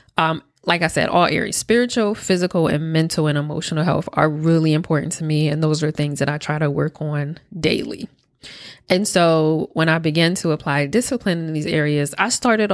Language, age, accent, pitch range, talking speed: English, 20-39, American, 155-185 Hz, 200 wpm